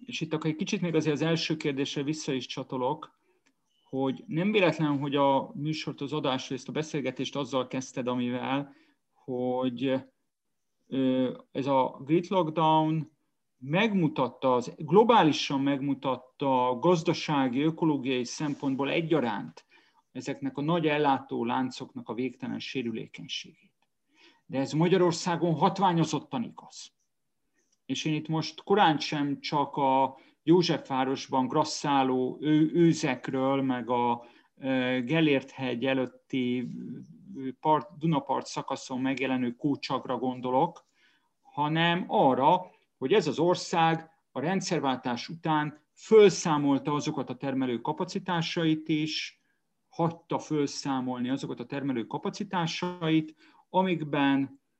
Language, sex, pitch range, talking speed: Hungarian, male, 130-160 Hz, 105 wpm